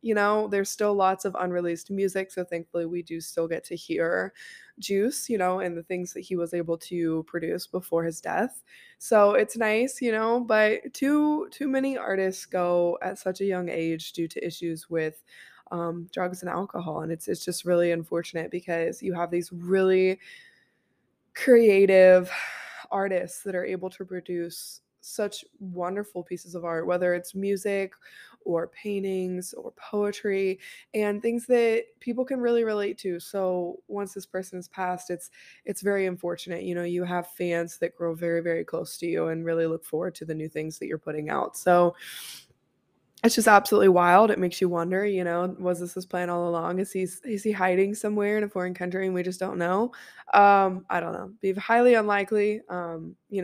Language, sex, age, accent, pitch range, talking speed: English, female, 20-39, American, 175-205 Hz, 190 wpm